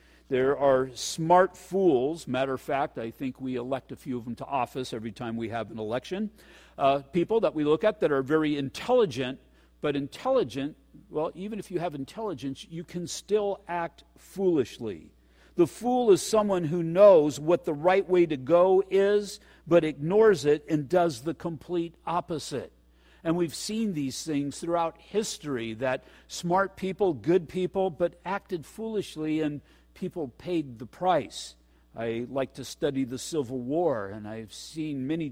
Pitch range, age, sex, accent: 135-195 Hz, 50-69, male, American